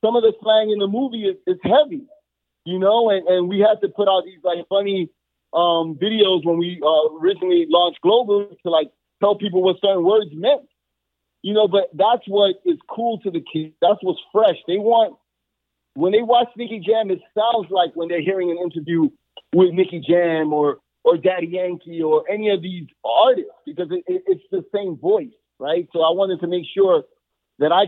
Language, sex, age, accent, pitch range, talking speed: English, male, 30-49, American, 165-210 Hz, 200 wpm